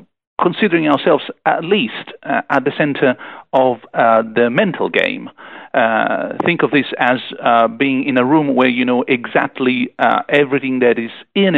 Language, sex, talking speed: English, male, 165 wpm